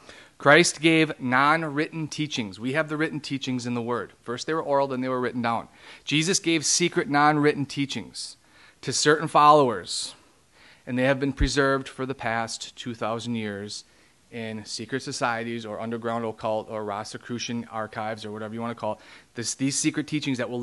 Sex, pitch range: male, 120-155 Hz